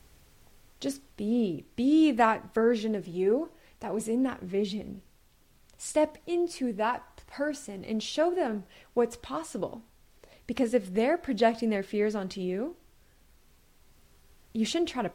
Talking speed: 130 wpm